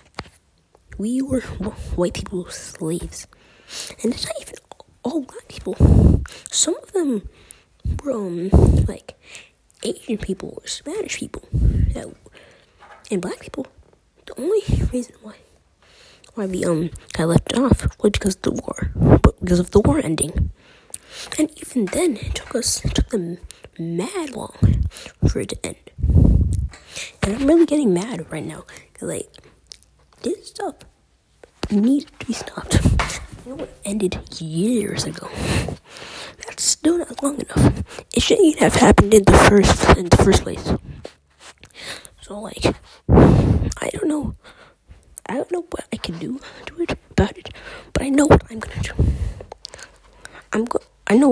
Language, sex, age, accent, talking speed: English, female, 20-39, American, 145 wpm